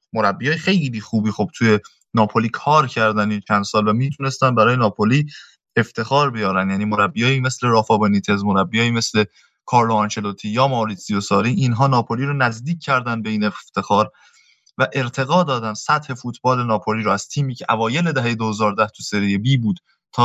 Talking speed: 165 wpm